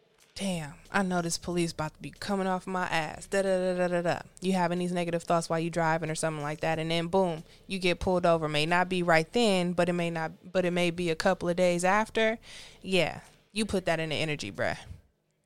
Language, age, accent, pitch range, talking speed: English, 20-39, American, 165-190 Hz, 245 wpm